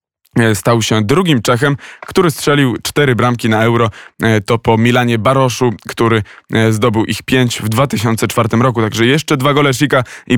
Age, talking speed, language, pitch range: 20-39, 155 wpm, Polish, 115-135 Hz